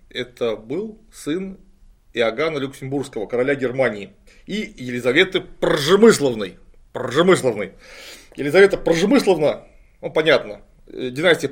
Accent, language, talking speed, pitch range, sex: native, Russian, 85 wpm, 135-185 Hz, male